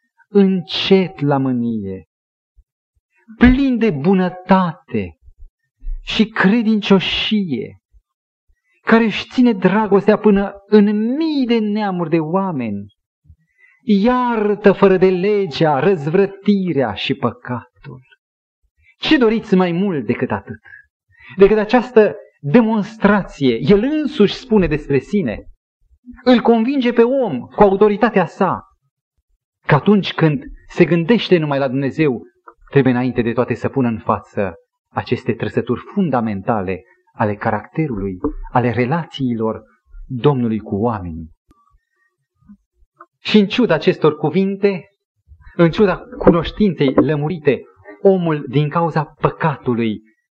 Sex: male